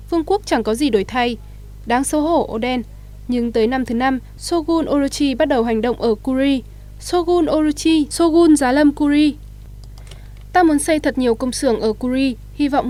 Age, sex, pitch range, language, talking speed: 10-29, female, 235-295 Hz, Vietnamese, 190 wpm